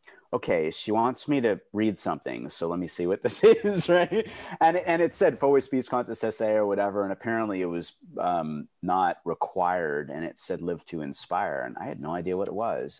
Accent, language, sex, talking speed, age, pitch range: American, English, male, 210 wpm, 30-49, 90-120 Hz